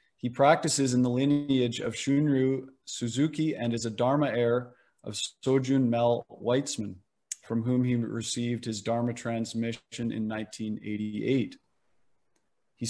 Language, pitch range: English, 115-135 Hz